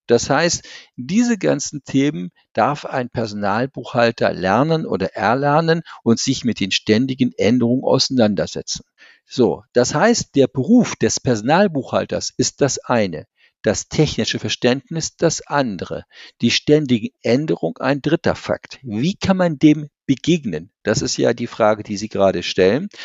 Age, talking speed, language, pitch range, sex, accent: 50-69, 140 wpm, German, 120-175 Hz, male, German